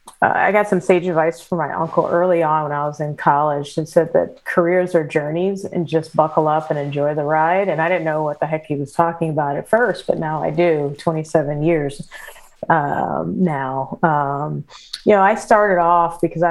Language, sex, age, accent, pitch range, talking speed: English, female, 30-49, American, 155-180 Hz, 210 wpm